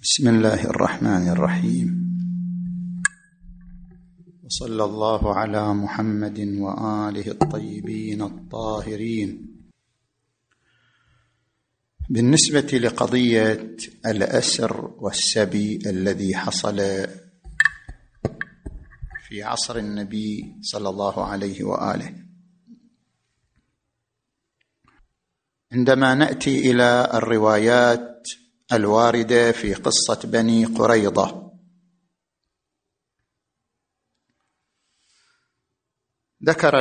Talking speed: 55 wpm